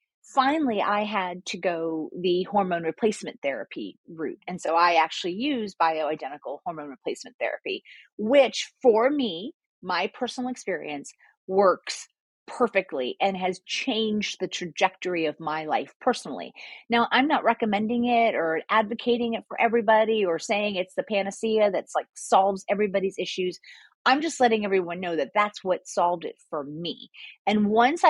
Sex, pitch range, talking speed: female, 180-240 Hz, 150 wpm